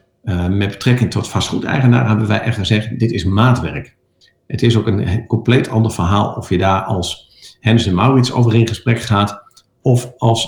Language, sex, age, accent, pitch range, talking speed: Dutch, male, 50-69, Dutch, 95-120 Hz, 190 wpm